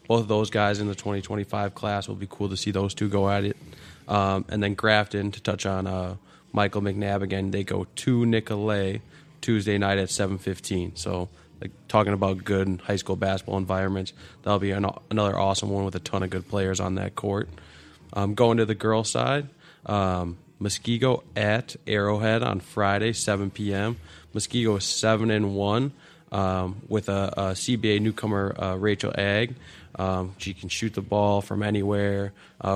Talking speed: 175 wpm